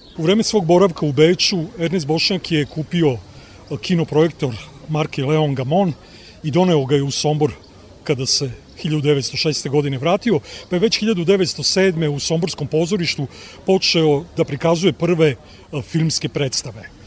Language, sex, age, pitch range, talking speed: Croatian, male, 40-59, 145-175 Hz, 130 wpm